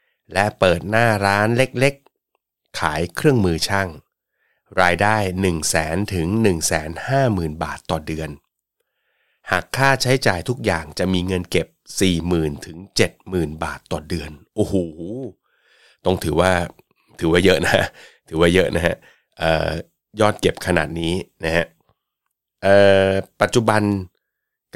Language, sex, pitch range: Thai, male, 85-105 Hz